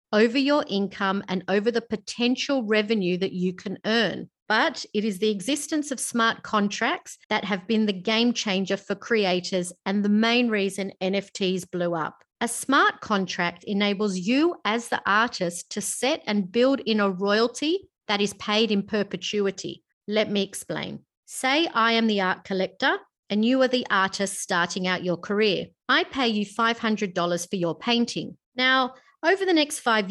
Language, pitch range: English, 190-245 Hz